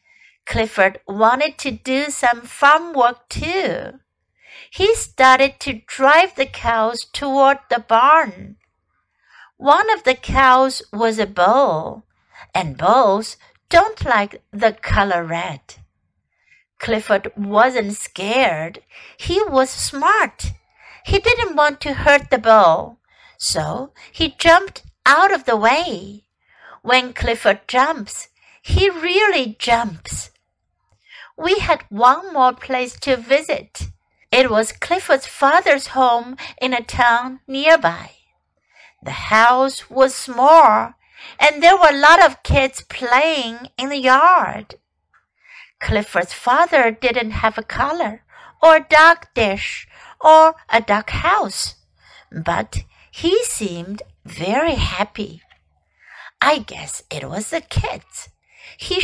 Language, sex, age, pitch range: Chinese, female, 60-79, 225-315 Hz